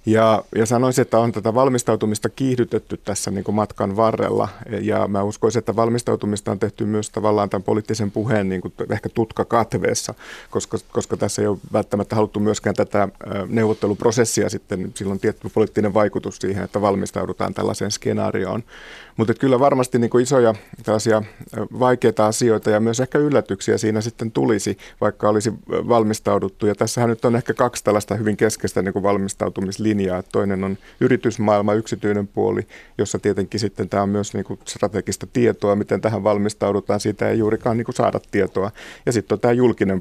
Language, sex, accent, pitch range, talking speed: Finnish, male, native, 100-115 Hz, 160 wpm